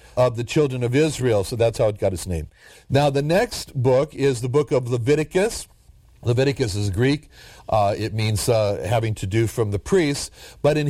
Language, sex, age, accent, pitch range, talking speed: English, male, 60-79, American, 110-145 Hz, 200 wpm